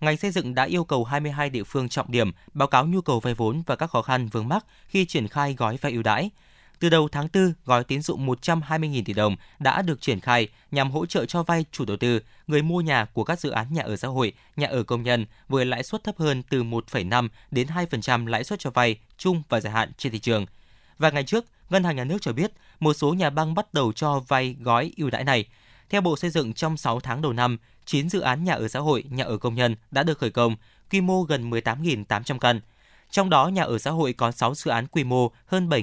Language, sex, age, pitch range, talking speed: Vietnamese, male, 20-39, 115-160 Hz, 250 wpm